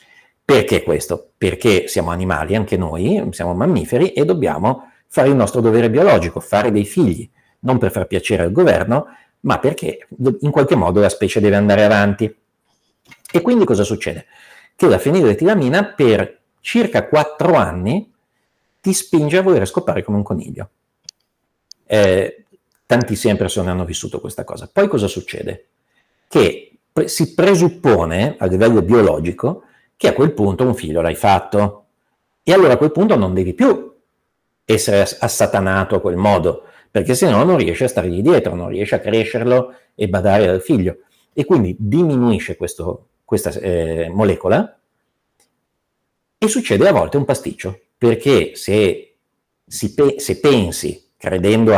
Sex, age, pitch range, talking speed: male, 50-69, 100-140 Hz, 145 wpm